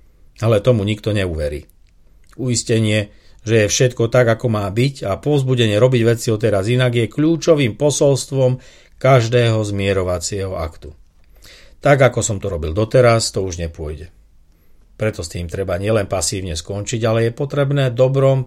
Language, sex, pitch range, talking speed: Slovak, male, 100-130 Hz, 145 wpm